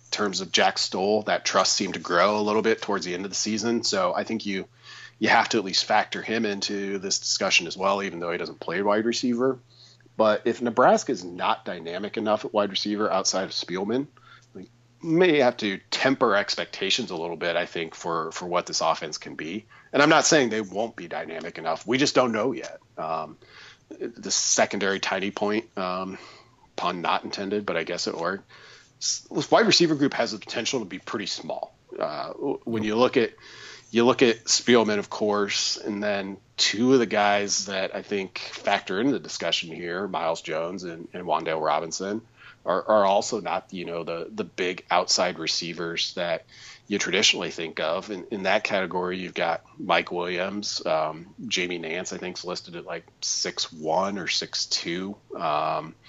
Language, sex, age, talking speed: English, male, 40-59, 195 wpm